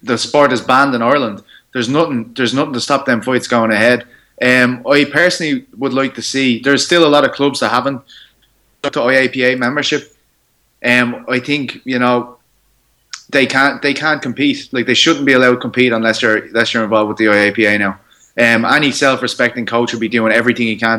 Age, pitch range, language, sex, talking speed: 20-39, 115-130 Hz, English, male, 205 wpm